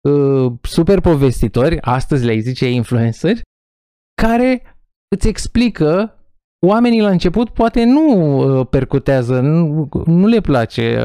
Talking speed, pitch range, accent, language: 105 wpm, 125-200 Hz, native, Romanian